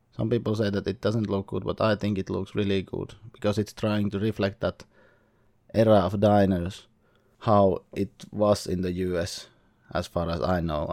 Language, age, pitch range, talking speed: English, 20-39, 95-110 Hz, 190 wpm